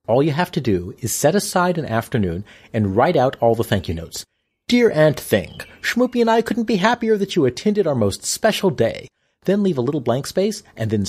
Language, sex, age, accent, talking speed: English, male, 40-59, American, 225 wpm